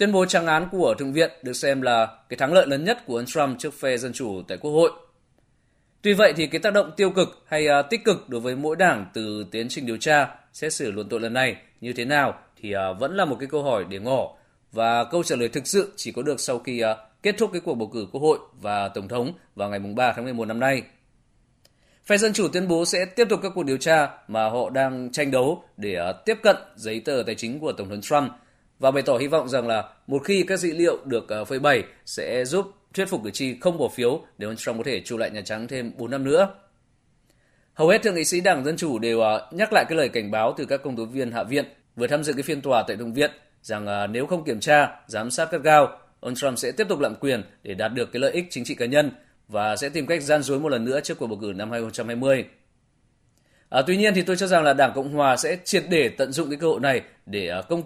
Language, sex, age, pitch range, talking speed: Vietnamese, male, 20-39, 115-165 Hz, 260 wpm